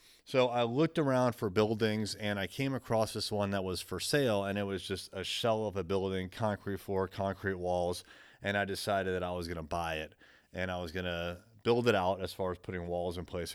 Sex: male